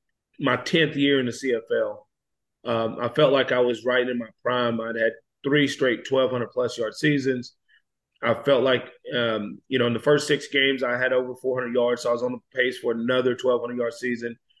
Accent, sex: American, male